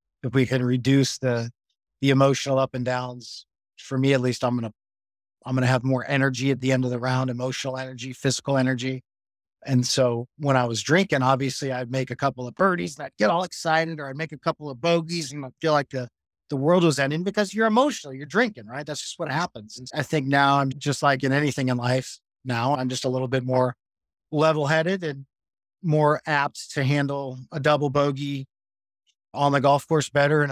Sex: male